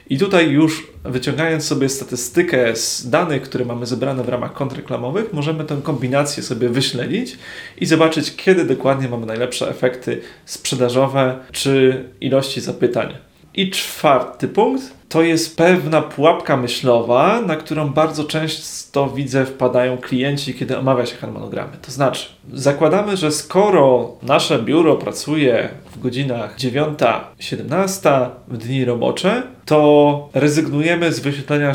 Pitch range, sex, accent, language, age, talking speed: 125-155 Hz, male, native, Polish, 30-49, 125 wpm